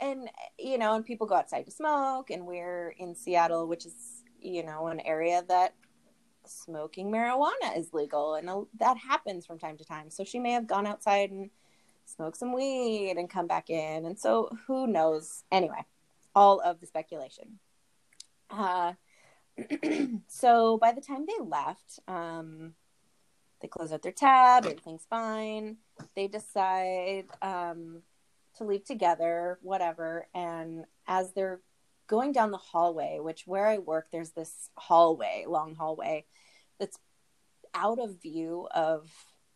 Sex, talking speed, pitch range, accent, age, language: female, 145 wpm, 165-220 Hz, American, 20-39, English